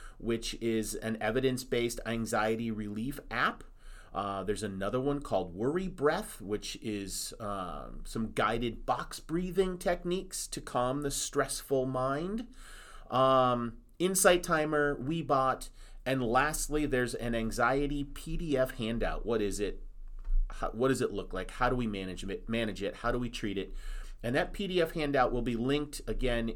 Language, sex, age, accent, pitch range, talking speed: English, male, 30-49, American, 105-145 Hz, 145 wpm